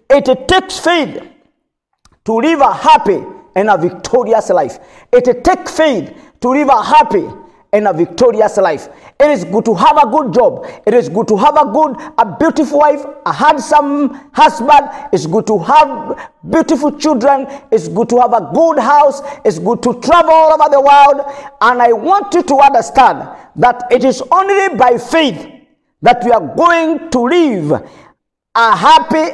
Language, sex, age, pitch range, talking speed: English, male, 50-69, 235-310 Hz, 170 wpm